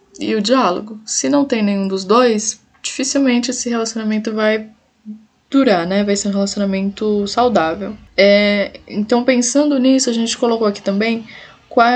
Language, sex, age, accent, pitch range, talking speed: Portuguese, female, 10-29, Brazilian, 185-230 Hz, 150 wpm